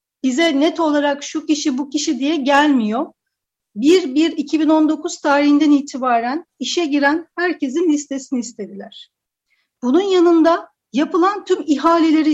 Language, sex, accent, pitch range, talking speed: Turkish, female, native, 260-320 Hz, 115 wpm